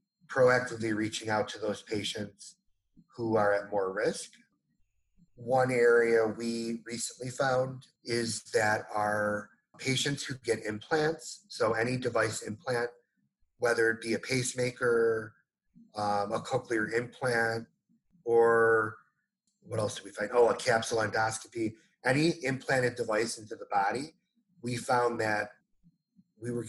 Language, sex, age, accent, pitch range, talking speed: English, male, 30-49, American, 110-130 Hz, 130 wpm